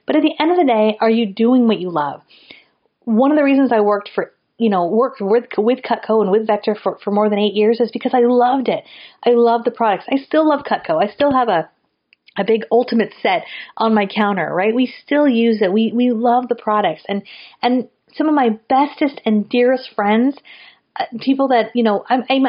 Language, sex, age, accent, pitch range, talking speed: English, female, 30-49, American, 210-270 Hz, 220 wpm